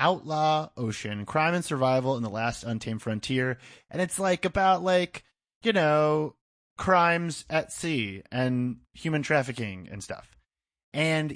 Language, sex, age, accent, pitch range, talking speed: English, male, 30-49, American, 120-155 Hz, 135 wpm